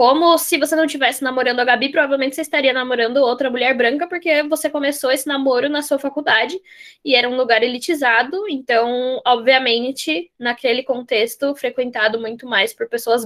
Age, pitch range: 10-29, 225-275 Hz